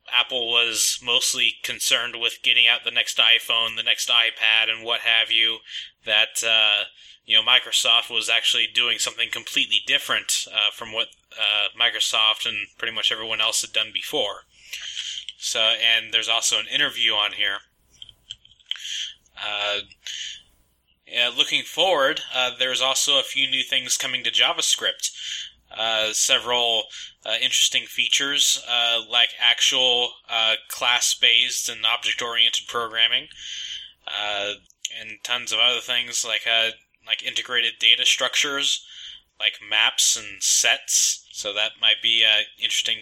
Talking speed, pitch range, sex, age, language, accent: 135 wpm, 110-125 Hz, male, 20-39, English, American